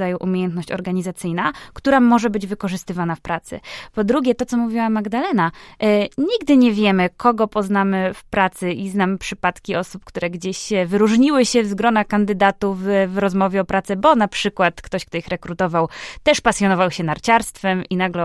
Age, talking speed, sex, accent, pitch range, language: 20-39, 170 wpm, female, native, 175-220 Hz, Polish